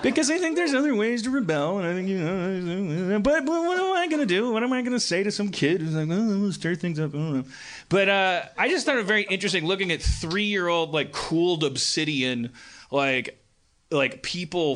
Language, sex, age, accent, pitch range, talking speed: English, male, 30-49, American, 125-160 Hz, 230 wpm